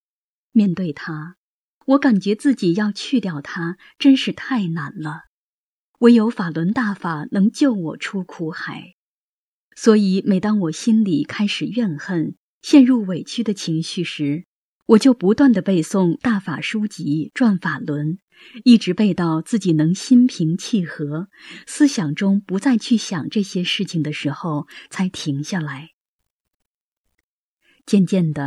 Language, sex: Chinese, female